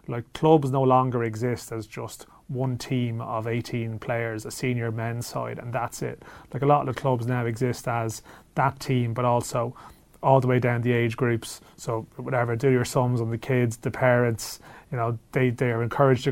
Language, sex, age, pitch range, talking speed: English, male, 30-49, 120-135 Hz, 205 wpm